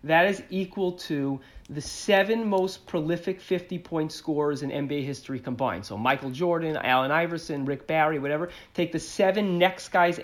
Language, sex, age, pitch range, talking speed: English, male, 40-59, 145-190 Hz, 165 wpm